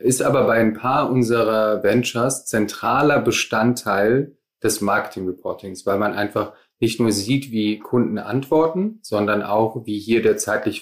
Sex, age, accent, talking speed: male, 30-49, German, 145 wpm